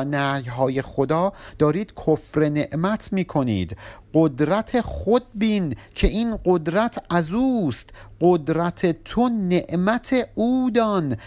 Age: 50-69